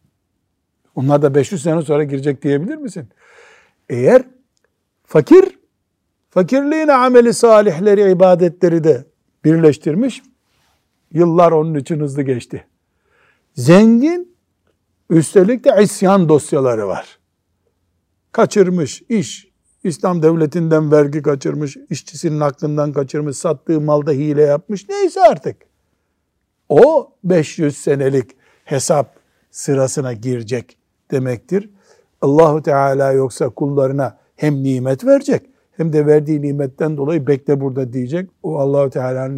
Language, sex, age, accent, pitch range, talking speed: Turkish, male, 60-79, native, 135-195 Hz, 100 wpm